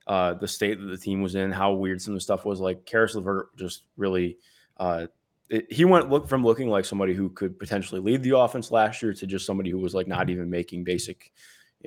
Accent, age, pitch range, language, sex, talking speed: American, 20-39, 95-120 Hz, English, male, 245 wpm